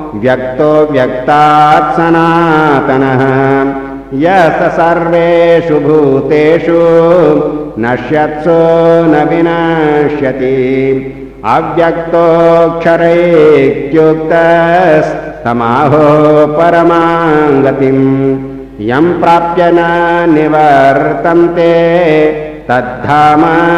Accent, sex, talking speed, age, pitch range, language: native, male, 35 wpm, 60-79, 135-170 Hz, Hindi